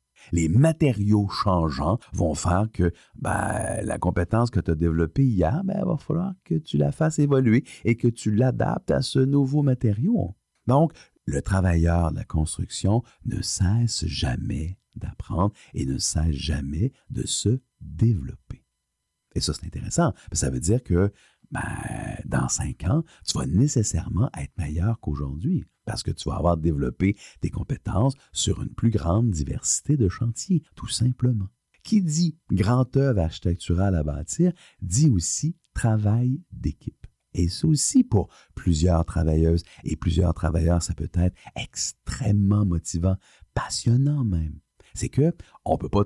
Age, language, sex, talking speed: 50-69, French, male, 150 wpm